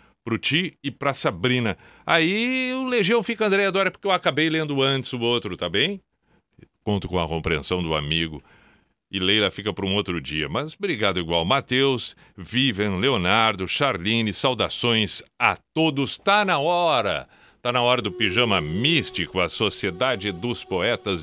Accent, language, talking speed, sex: Brazilian, Portuguese, 160 wpm, male